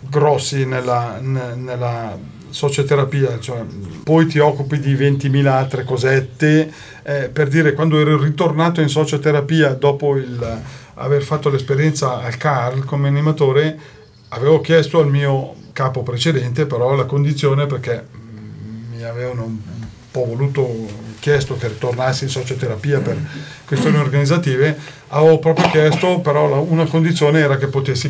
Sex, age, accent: male, 40-59, native